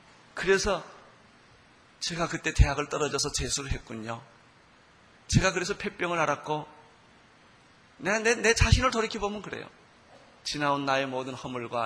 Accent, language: native, Korean